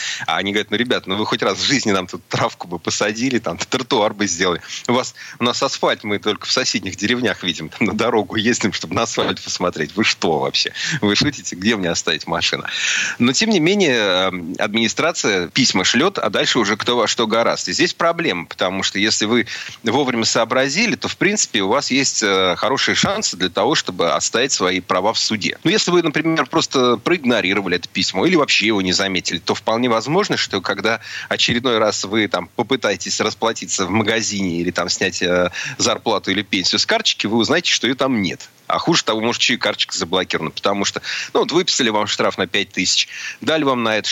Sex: male